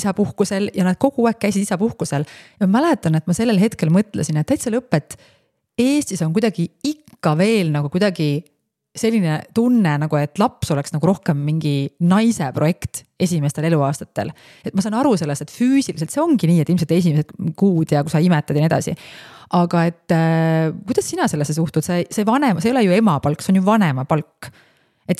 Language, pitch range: English, 155-205 Hz